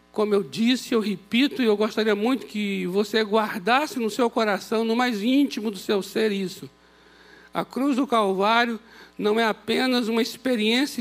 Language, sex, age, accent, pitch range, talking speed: Portuguese, male, 60-79, Brazilian, 160-230 Hz, 170 wpm